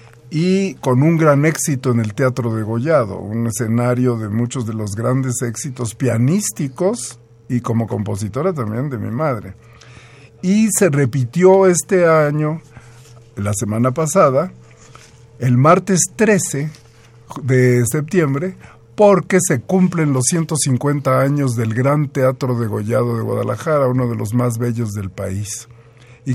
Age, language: 50-69, Spanish